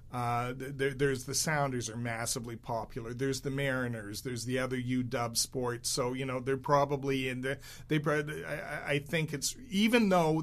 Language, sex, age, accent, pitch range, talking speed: English, male, 40-59, American, 120-140 Hz, 180 wpm